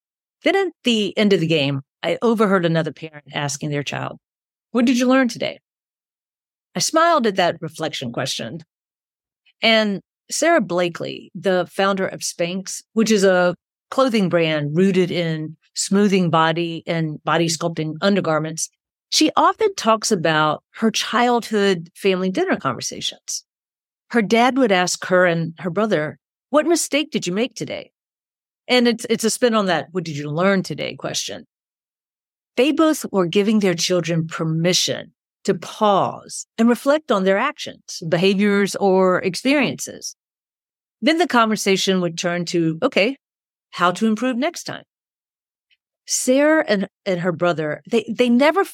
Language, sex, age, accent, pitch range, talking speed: English, female, 50-69, American, 175-230 Hz, 145 wpm